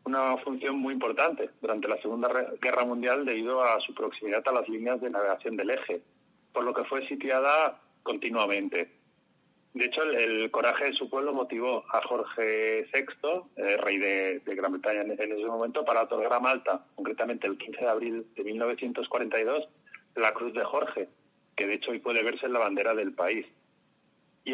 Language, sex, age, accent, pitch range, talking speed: Spanish, male, 30-49, Spanish, 115-135 Hz, 180 wpm